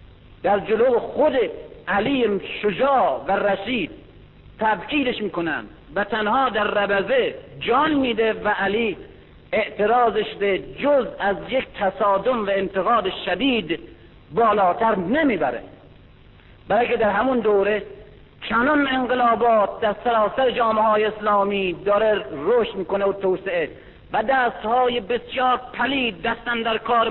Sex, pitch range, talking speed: male, 205-255 Hz, 115 wpm